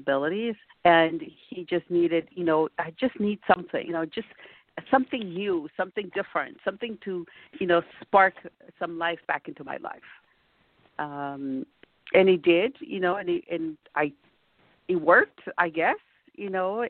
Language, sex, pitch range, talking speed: English, female, 165-215 Hz, 160 wpm